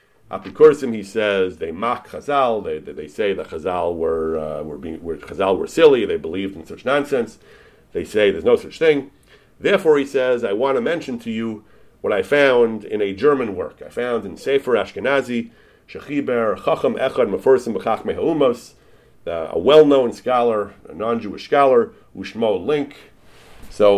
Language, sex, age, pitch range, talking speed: English, male, 40-59, 100-155 Hz, 160 wpm